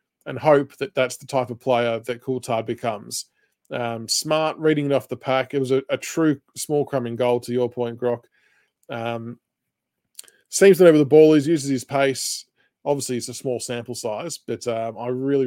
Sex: male